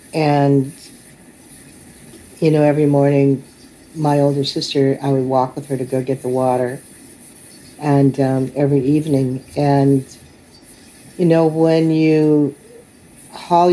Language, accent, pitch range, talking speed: English, American, 130-145 Hz, 120 wpm